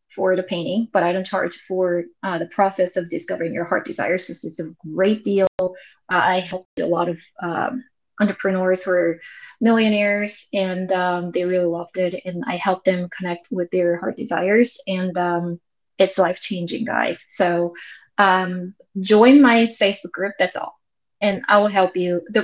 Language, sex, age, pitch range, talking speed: English, female, 20-39, 180-230 Hz, 180 wpm